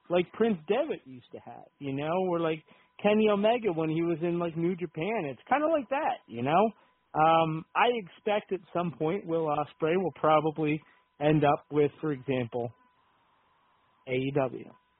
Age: 40-59